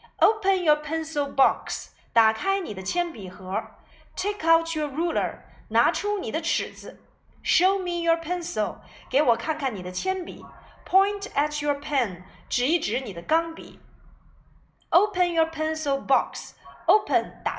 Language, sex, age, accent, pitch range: Chinese, female, 30-49, native, 275-375 Hz